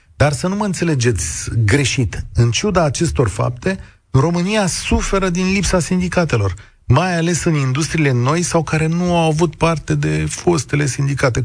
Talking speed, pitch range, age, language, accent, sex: 150 wpm, 110-165 Hz, 40-59, Romanian, native, male